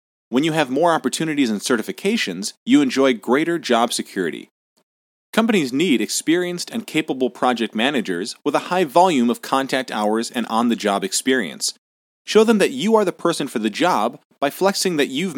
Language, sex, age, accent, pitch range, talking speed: English, male, 30-49, American, 120-185 Hz, 170 wpm